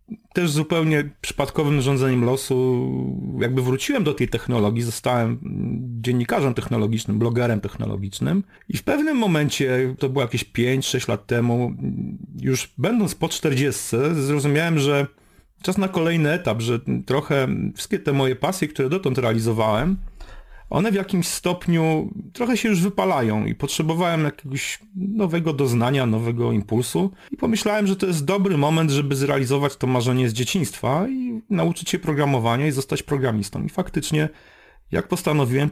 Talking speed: 140 wpm